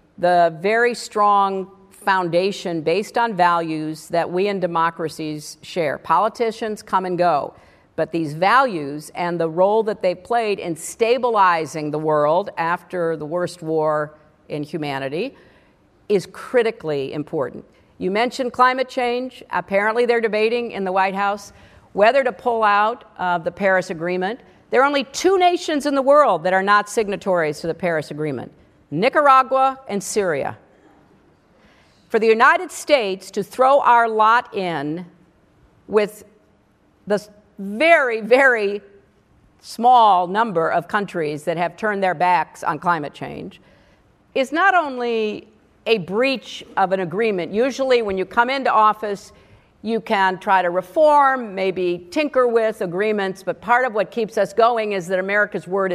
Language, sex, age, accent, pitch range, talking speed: English, female, 50-69, American, 175-235 Hz, 145 wpm